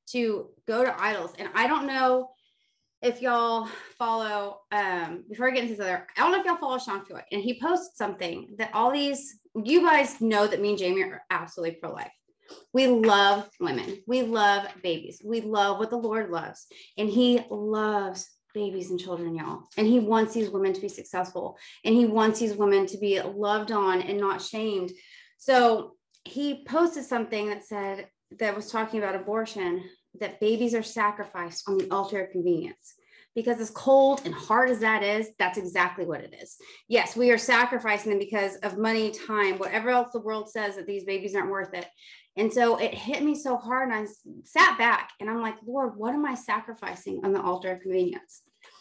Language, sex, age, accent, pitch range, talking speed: English, female, 20-39, American, 200-250 Hz, 195 wpm